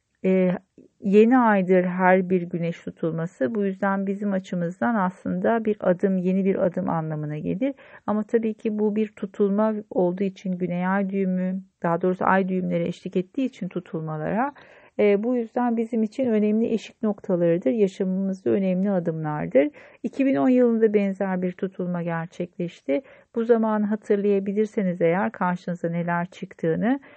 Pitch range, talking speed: 185-225 Hz, 135 wpm